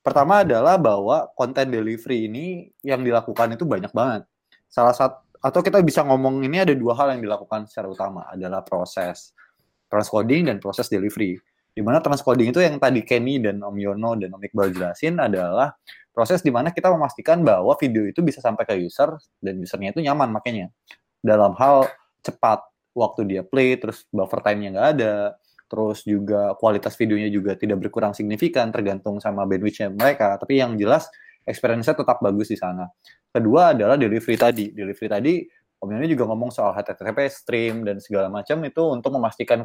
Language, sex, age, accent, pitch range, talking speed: English, male, 20-39, Indonesian, 105-135 Hz, 170 wpm